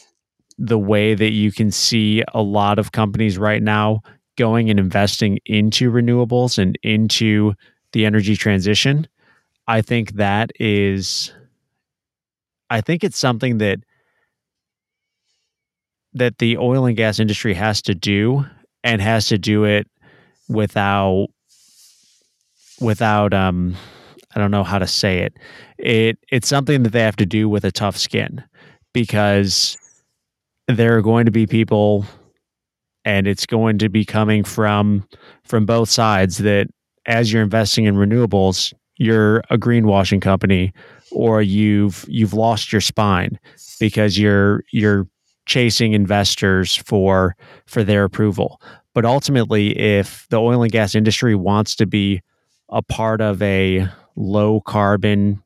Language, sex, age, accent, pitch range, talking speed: English, male, 20-39, American, 100-115 Hz, 135 wpm